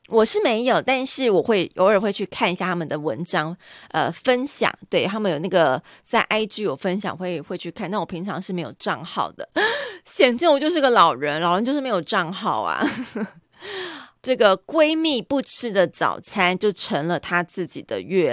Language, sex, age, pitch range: Chinese, female, 30-49, 170-230 Hz